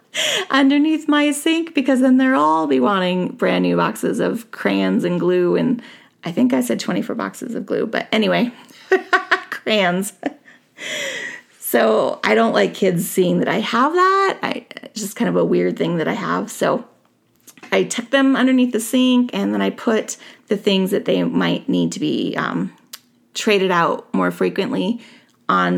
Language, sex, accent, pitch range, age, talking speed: English, female, American, 200-265 Hz, 30-49, 170 wpm